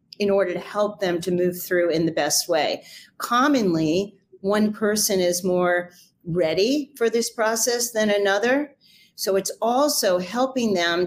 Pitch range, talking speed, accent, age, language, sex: 185-220 Hz, 150 wpm, American, 40-59, English, female